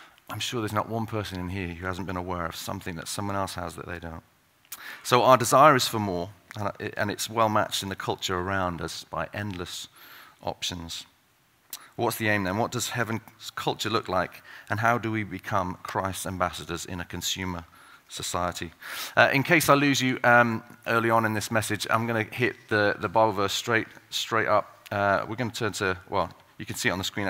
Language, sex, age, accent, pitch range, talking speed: English, male, 30-49, British, 95-130 Hz, 210 wpm